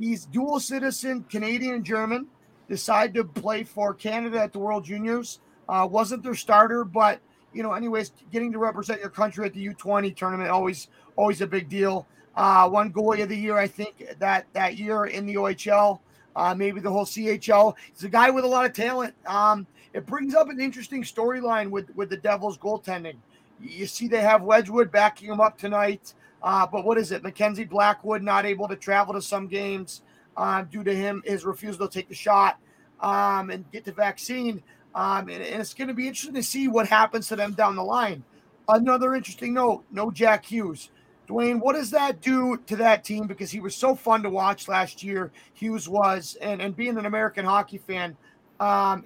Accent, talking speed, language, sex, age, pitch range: American, 200 wpm, English, male, 30-49, 200-230 Hz